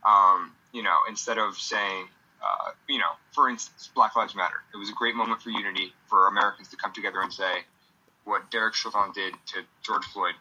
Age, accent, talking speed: 20-39, American, 200 wpm